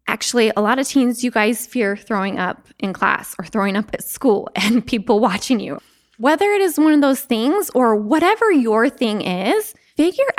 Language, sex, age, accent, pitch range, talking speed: English, female, 20-39, American, 210-280 Hz, 195 wpm